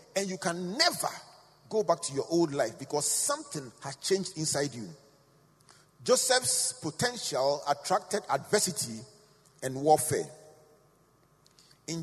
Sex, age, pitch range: male, 40-59, 145-205 Hz